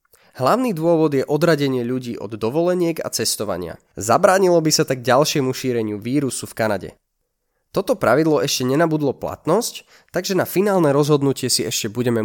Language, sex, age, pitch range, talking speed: Slovak, male, 20-39, 120-155 Hz, 145 wpm